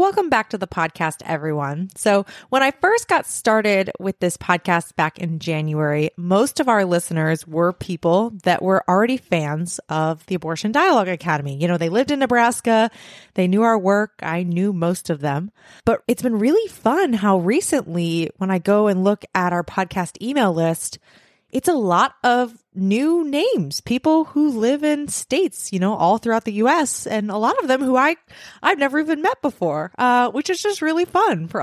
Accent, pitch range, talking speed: American, 180-245 Hz, 195 wpm